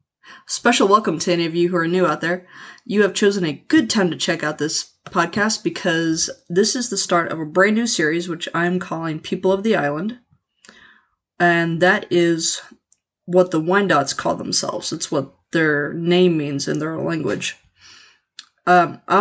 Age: 20-39